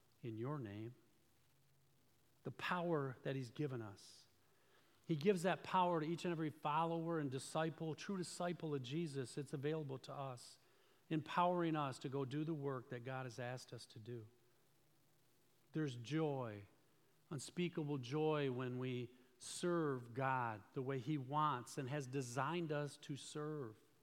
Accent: American